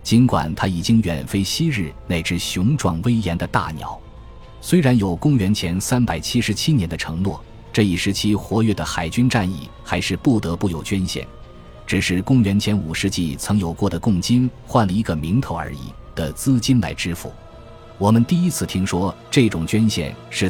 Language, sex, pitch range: Chinese, male, 85-115 Hz